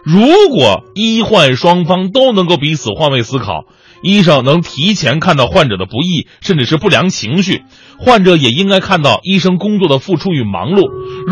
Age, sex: 30-49, male